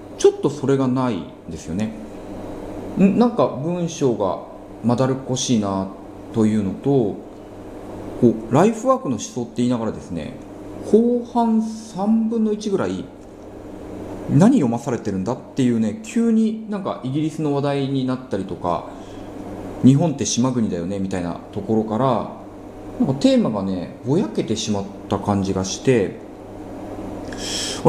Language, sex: Japanese, male